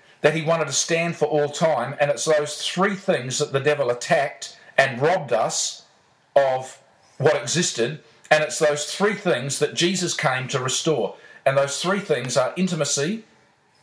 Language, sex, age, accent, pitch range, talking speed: English, male, 50-69, Australian, 135-170 Hz, 170 wpm